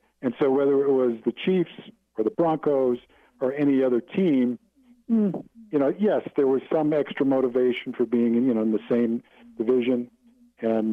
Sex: male